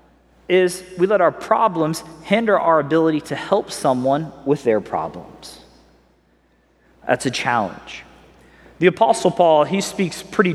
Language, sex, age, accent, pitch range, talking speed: English, male, 30-49, American, 155-210 Hz, 130 wpm